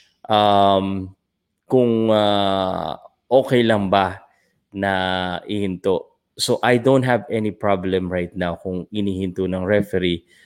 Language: Filipino